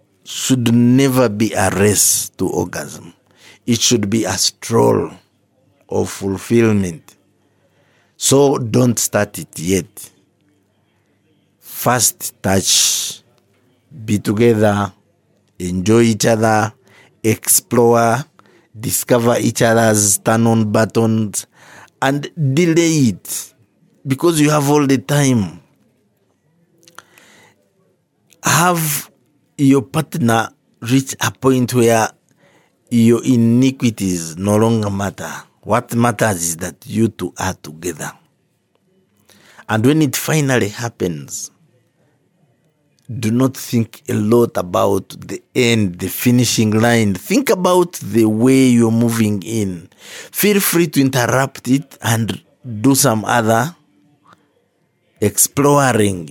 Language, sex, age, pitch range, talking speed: English, male, 50-69, 105-135 Hz, 100 wpm